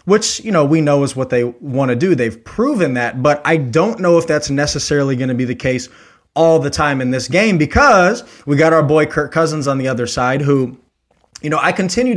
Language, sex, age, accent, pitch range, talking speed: English, male, 20-39, American, 130-160 Hz, 235 wpm